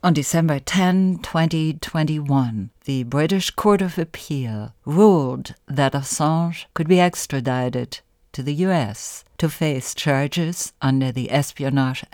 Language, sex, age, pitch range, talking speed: English, female, 60-79, 130-165 Hz, 120 wpm